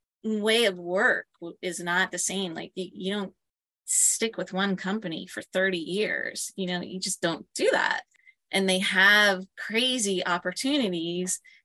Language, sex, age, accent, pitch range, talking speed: English, female, 20-39, American, 170-195 Hz, 150 wpm